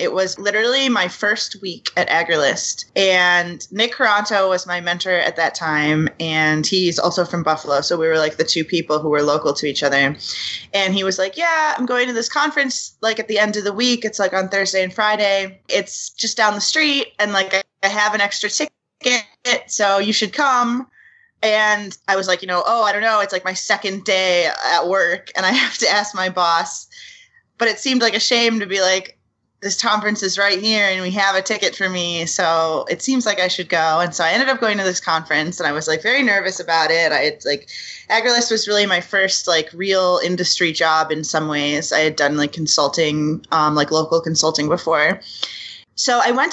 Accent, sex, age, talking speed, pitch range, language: American, female, 20-39, 220 wpm, 175-220 Hz, English